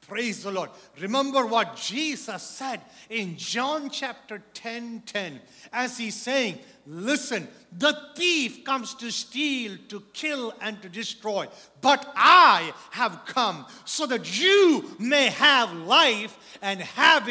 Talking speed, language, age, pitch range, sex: 130 wpm, English, 50-69, 225-310 Hz, male